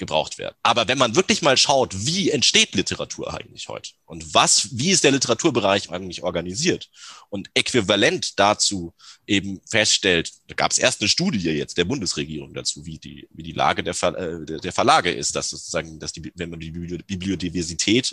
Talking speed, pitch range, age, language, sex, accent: 190 wpm, 90-125 Hz, 30-49, German, male, German